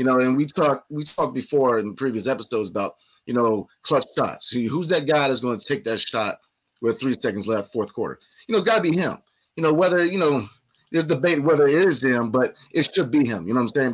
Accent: American